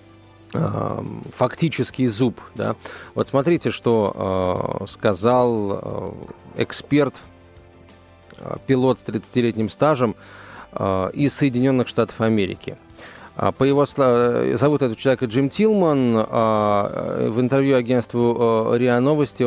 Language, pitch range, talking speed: Russian, 110-130 Hz, 100 wpm